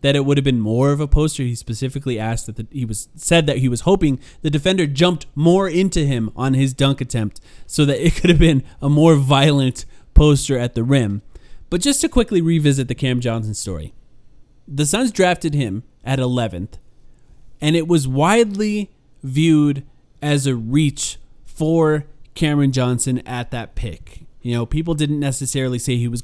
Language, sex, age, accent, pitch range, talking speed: English, male, 20-39, American, 125-160 Hz, 185 wpm